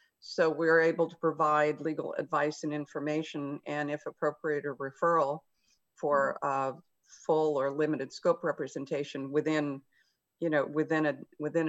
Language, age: English, 50-69